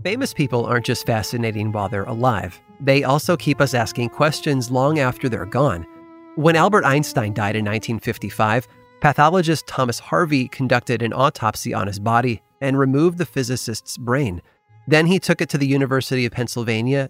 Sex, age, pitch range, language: male, 30-49, 115-145 Hz, English